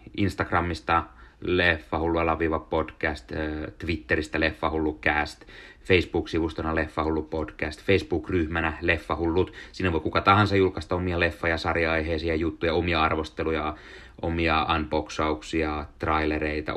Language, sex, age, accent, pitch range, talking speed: Finnish, male, 30-49, native, 80-95 Hz, 110 wpm